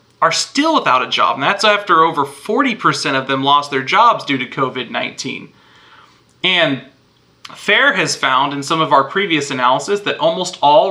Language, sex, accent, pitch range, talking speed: English, male, American, 135-170 Hz, 170 wpm